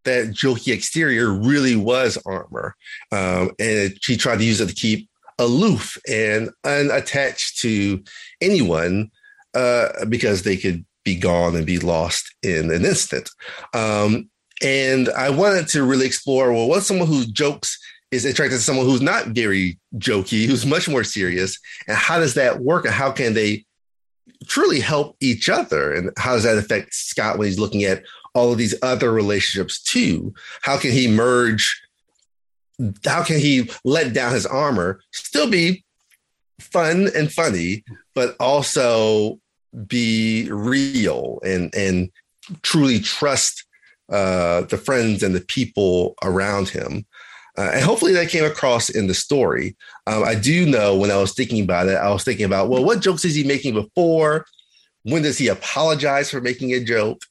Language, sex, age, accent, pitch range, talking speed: English, male, 30-49, American, 100-140 Hz, 165 wpm